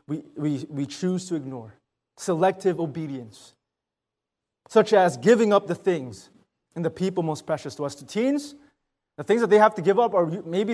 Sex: male